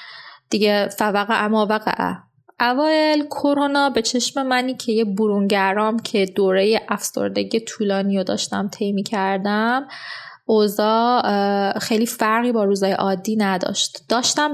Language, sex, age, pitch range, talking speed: Persian, female, 20-39, 200-235 Hz, 115 wpm